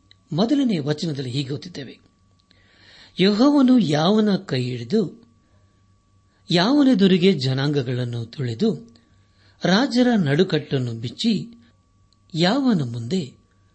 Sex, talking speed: male, 70 wpm